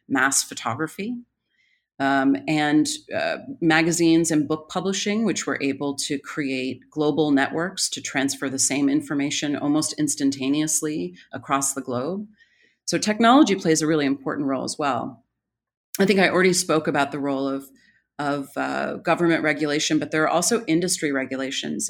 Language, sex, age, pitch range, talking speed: English, female, 30-49, 135-175 Hz, 150 wpm